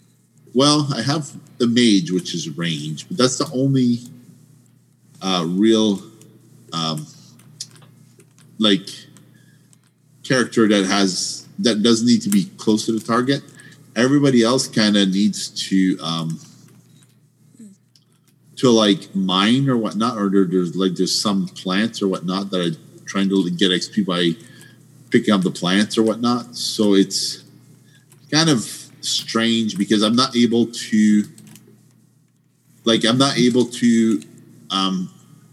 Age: 40-59